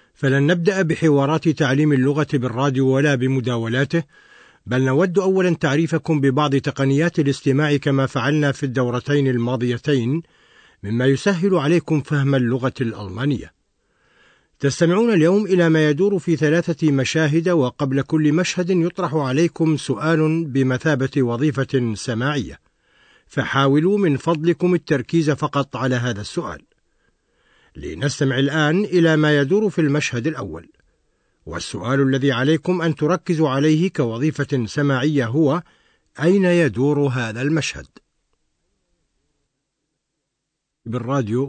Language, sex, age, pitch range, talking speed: Arabic, male, 50-69, 130-160 Hz, 105 wpm